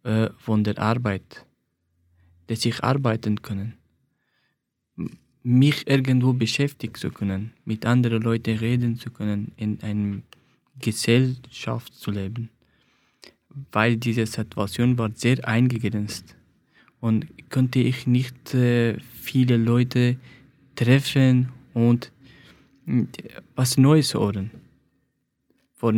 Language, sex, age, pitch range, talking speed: German, male, 20-39, 115-130 Hz, 95 wpm